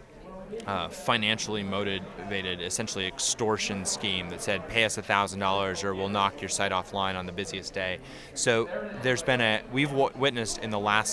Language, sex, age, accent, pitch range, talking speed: English, male, 30-49, American, 100-130 Hz, 165 wpm